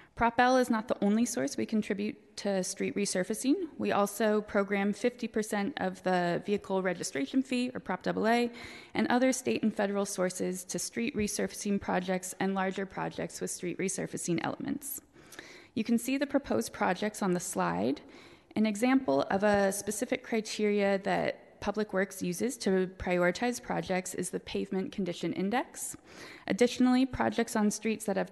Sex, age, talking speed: female, 20-39, 160 wpm